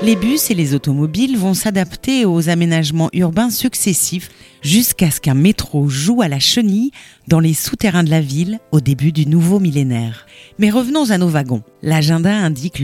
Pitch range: 155-220 Hz